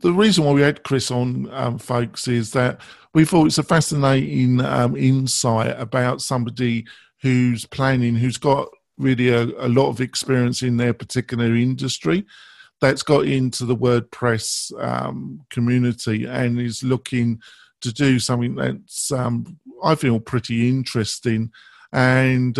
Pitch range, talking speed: 120-145 Hz, 145 wpm